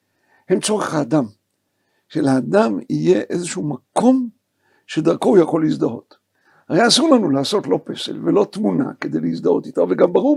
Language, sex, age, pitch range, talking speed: Hebrew, male, 60-79, 205-285 Hz, 140 wpm